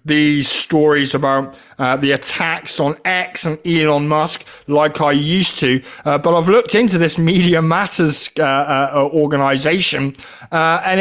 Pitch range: 145-185 Hz